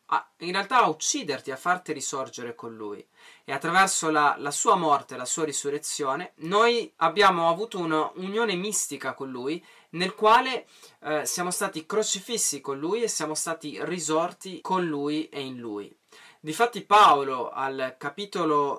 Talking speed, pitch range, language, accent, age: 145 wpm, 140-190 Hz, Italian, native, 20-39